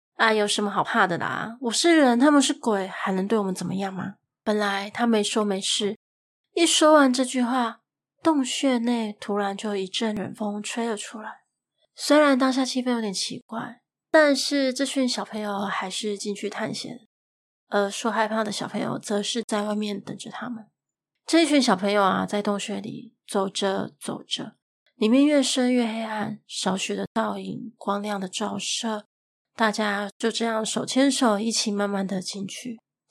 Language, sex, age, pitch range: Chinese, female, 20-39, 205-245 Hz